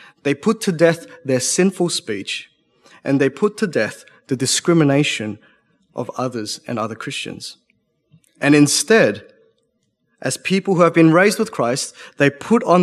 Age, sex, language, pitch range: 30-49, male, English, 125-170 Hz